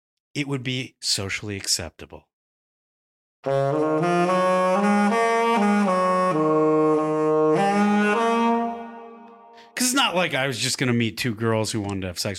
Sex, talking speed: male, 105 wpm